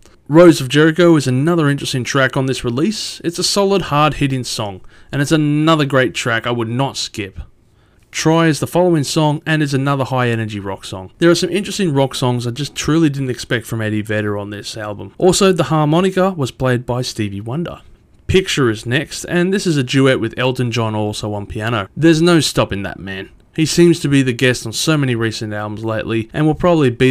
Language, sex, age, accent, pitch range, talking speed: English, male, 20-39, Australian, 115-160 Hz, 210 wpm